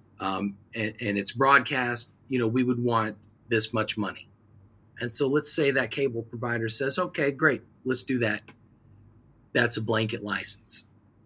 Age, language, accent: 40-59, English, American